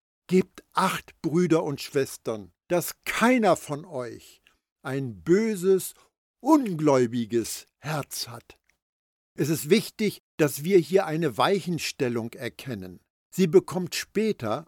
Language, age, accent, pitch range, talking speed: German, 60-79, German, 135-190 Hz, 105 wpm